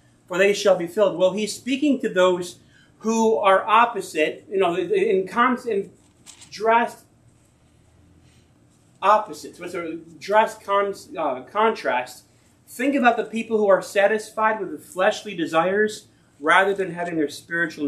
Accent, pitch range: American, 150-215 Hz